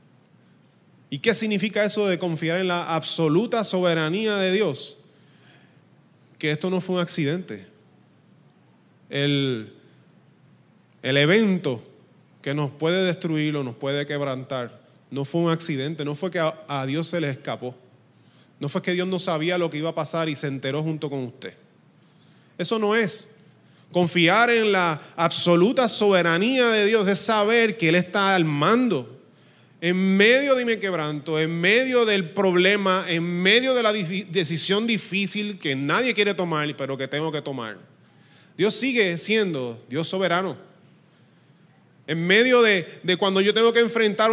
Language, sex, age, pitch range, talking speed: Spanish, male, 20-39, 155-210 Hz, 155 wpm